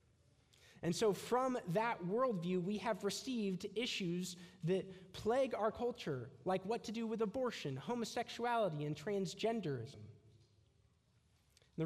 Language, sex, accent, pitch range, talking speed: English, male, American, 160-225 Hz, 115 wpm